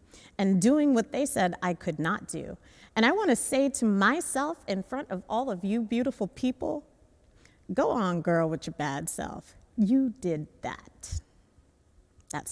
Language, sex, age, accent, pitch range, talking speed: English, female, 30-49, American, 145-205 Hz, 170 wpm